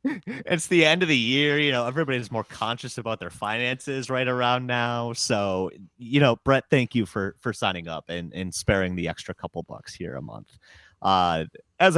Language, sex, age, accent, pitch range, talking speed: English, male, 30-49, American, 90-120 Hz, 195 wpm